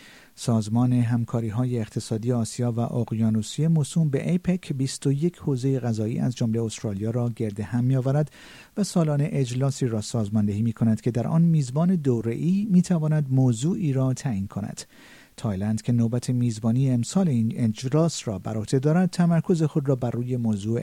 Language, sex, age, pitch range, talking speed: Persian, male, 50-69, 110-145 Hz, 160 wpm